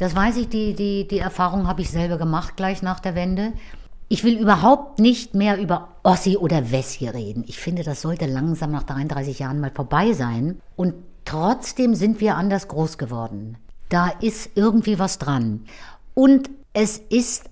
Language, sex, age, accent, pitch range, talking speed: German, female, 60-79, German, 130-185 Hz, 175 wpm